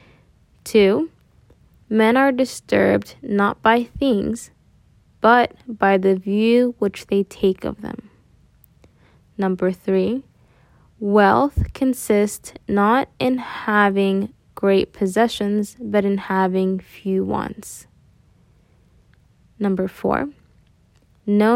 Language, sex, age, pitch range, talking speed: English, female, 10-29, 190-230 Hz, 90 wpm